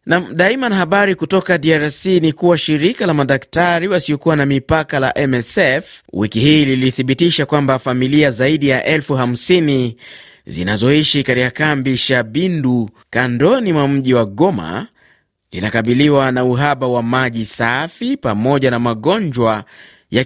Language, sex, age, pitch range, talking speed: Swahili, male, 30-49, 120-155 Hz, 125 wpm